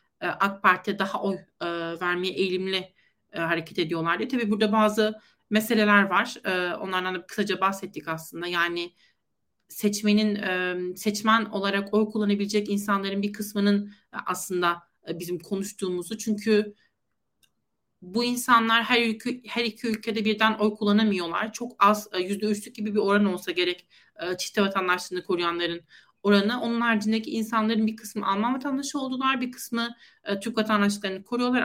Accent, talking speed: native, 130 wpm